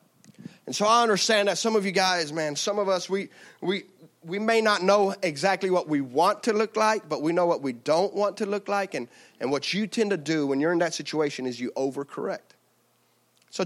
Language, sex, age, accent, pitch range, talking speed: English, male, 30-49, American, 170-220 Hz, 230 wpm